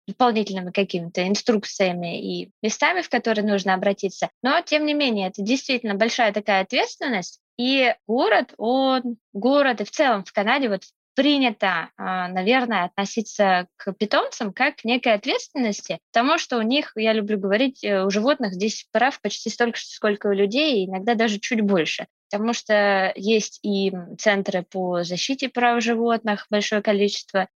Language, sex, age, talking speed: Russian, female, 20-39, 150 wpm